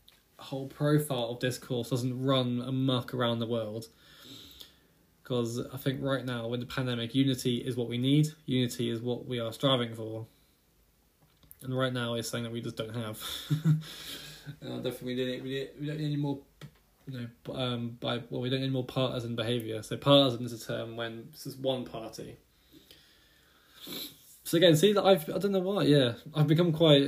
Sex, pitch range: male, 120-145 Hz